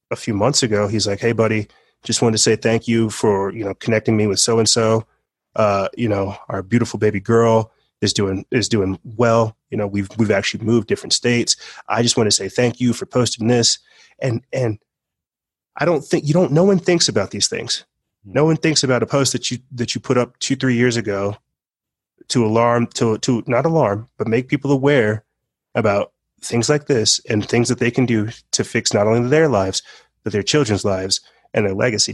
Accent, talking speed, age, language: American, 210 wpm, 30-49, English